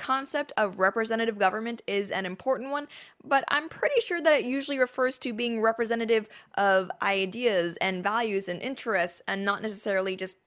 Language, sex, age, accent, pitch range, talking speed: English, female, 10-29, American, 190-255 Hz, 165 wpm